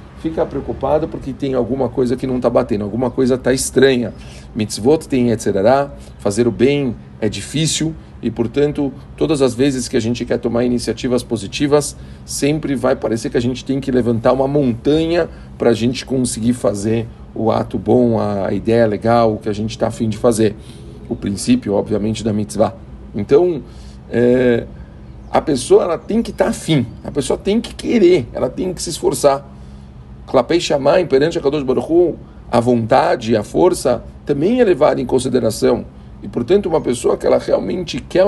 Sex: male